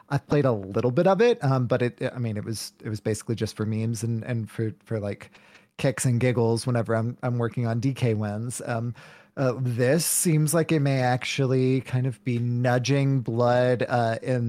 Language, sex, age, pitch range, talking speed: English, male, 30-49, 115-135 Hz, 210 wpm